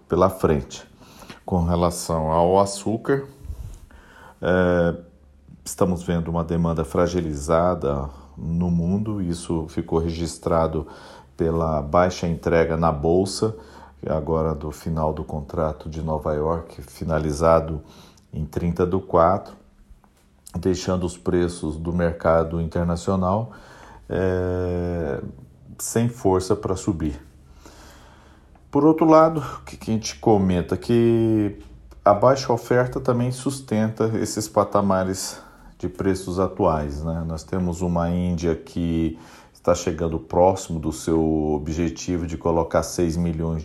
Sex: male